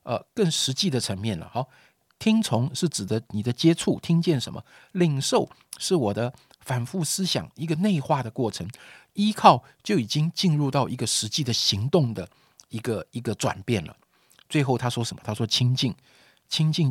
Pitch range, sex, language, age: 105-140 Hz, male, Chinese, 50-69